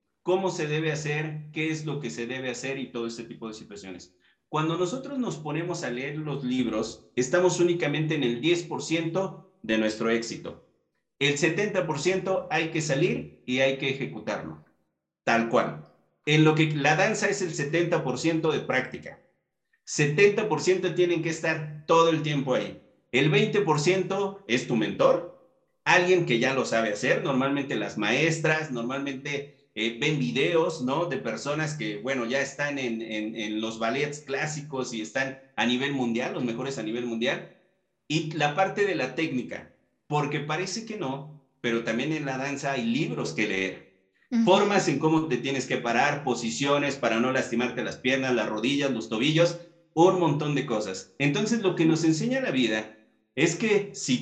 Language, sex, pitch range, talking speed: Spanish, male, 125-170 Hz, 170 wpm